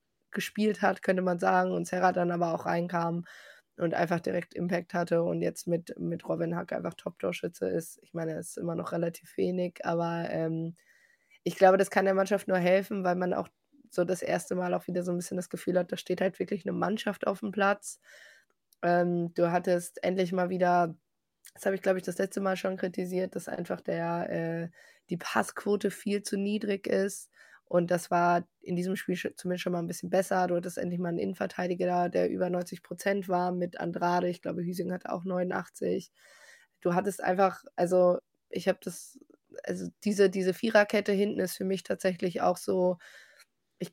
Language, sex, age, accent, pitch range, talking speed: German, female, 20-39, German, 175-195 Hz, 195 wpm